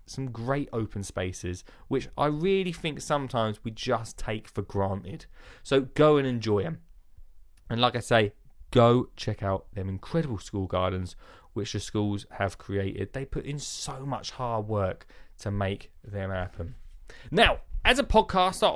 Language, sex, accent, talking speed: English, male, British, 160 wpm